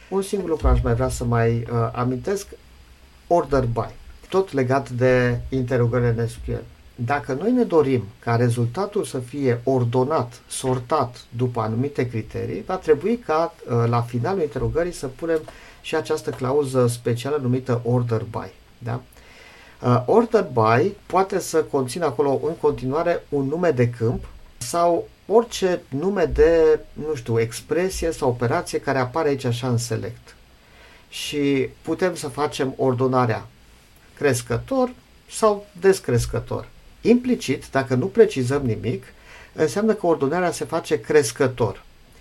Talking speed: 135 wpm